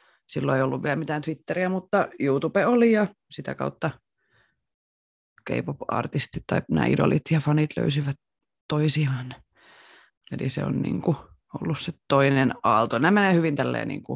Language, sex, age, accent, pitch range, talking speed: Finnish, female, 30-49, native, 135-160 Hz, 145 wpm